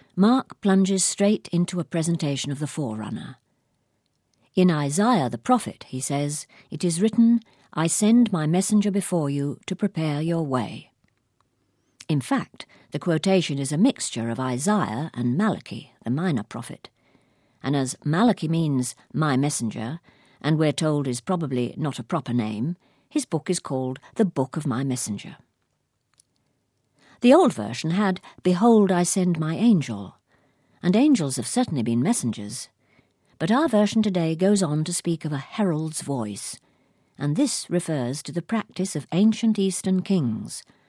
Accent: British